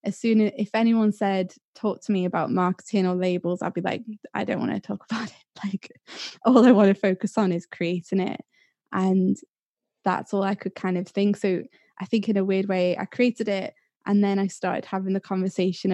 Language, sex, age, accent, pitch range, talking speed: English, female, 20-39, British, 190-215 Hz, 220 wpm